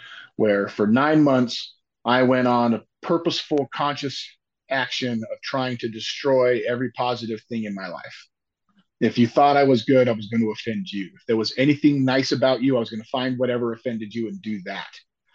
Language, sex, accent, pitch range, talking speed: English, male, American, 110-130 Hz, 200 wpm